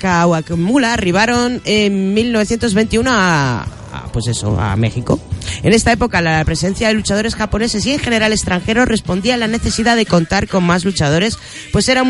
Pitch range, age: 135-225 Hz, 30-49